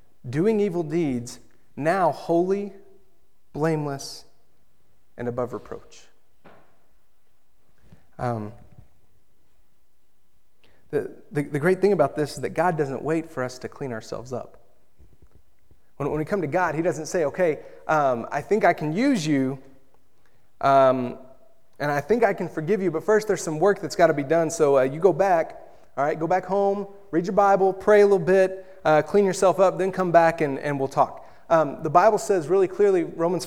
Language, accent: English, American